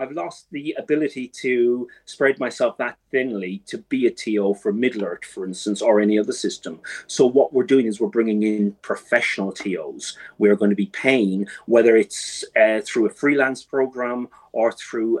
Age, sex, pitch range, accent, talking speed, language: 30-49, male, 100-130 Hz, British, 180 wpm, English